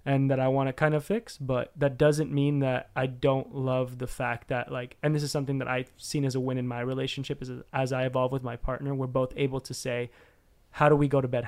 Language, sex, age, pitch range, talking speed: English, male, 20-39, 125-145 Hz, 265 wpm